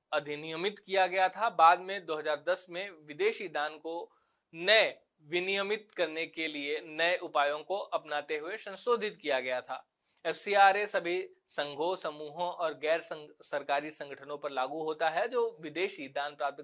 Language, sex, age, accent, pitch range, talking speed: Hindi, male, 20-39, native, 155-200 Hz, 155 wpm